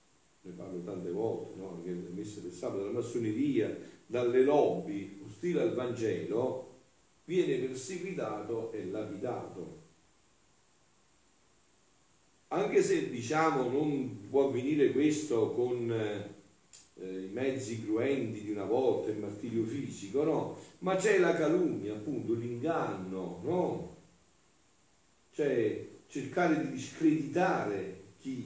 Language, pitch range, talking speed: Italian, 115-175 Hz, 105 wpm